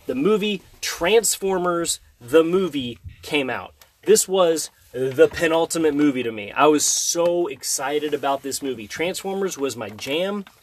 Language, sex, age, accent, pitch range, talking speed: English, male, 30-49, American, 140-205 Hz, 145 wpm